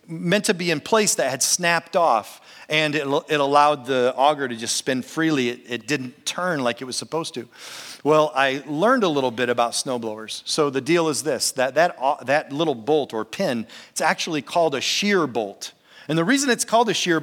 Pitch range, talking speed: 140-195 Hz, 210 wpm